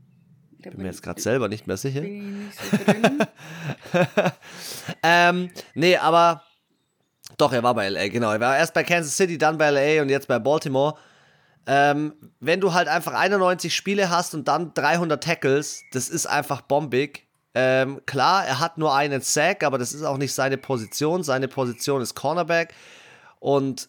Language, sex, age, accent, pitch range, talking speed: German, male, 30-49, German, 125-155 Hz, 165 wpm